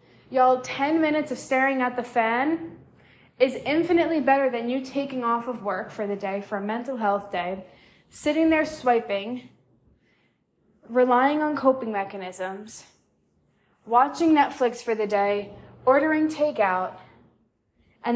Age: 10-29